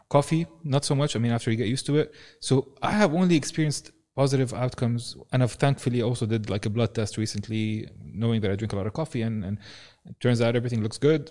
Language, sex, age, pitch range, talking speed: English, male, 20-39, 110-130 Hz, 240 wpm